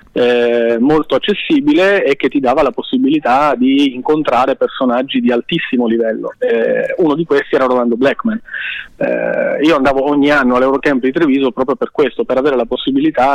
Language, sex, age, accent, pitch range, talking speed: Italian, male, 30-49, native, 120-155 Hz, 165 wpm